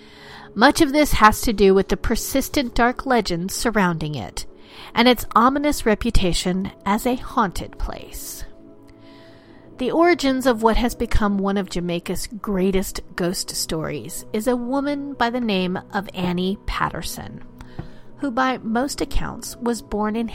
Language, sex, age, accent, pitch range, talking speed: English, female, 40-59, American, 185-250 Hz, 145 wpm